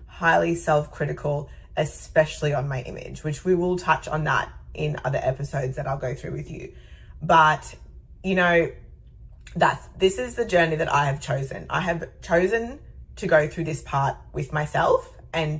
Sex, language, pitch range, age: female, English, 145-180 Hz, 20-39